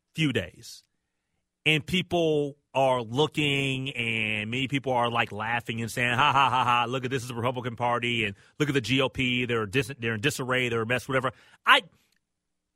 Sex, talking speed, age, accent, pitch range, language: male, 190 wpm, 30-49, American, 120-170 Hz, English